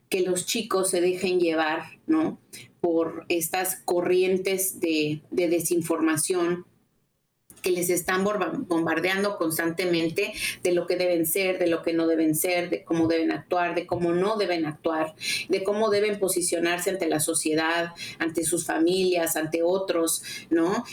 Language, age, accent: Spanish, 30-49, Mexican